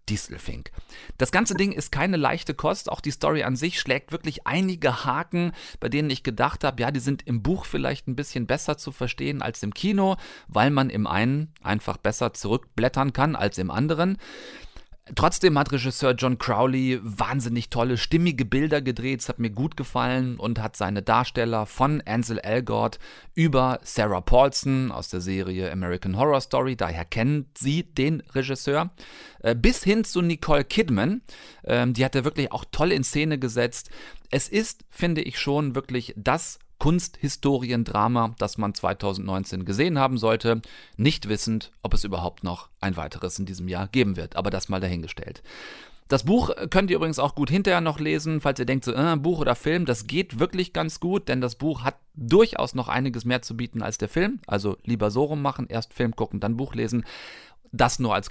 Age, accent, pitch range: 40-59, German, 110-150 Hz